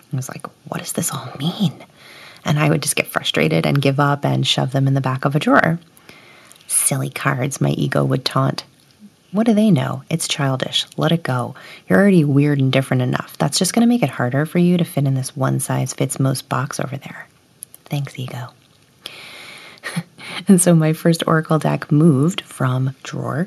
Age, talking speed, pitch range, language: 30-49, 195 wpm, 140-180 Hz, English